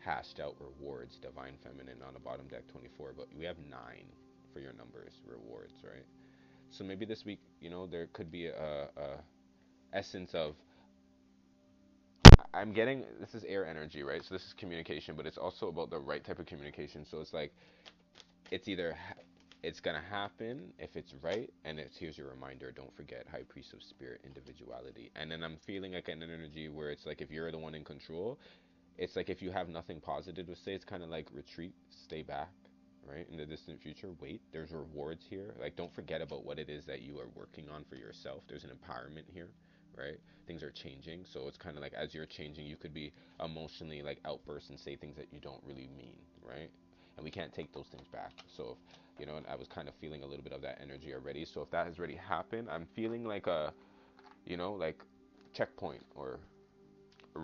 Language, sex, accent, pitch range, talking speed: English, male, American, 70-85 Hz, 210 wpm